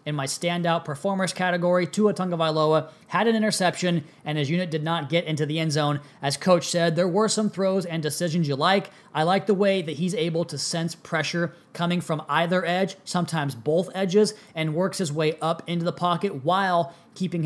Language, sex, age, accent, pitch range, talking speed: English, male, 20-39, American, 150-180 Hz, 200 wpm